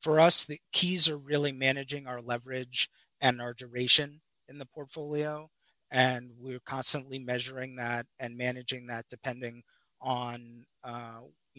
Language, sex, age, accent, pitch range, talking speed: English, male, 30-49, American, 120-135 Hz, 135 wpm